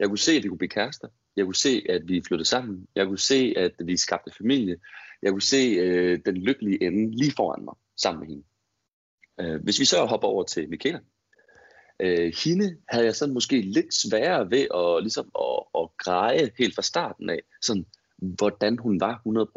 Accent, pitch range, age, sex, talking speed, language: native, 100-160 Hz, 30-49, male, 195 wpm, Danish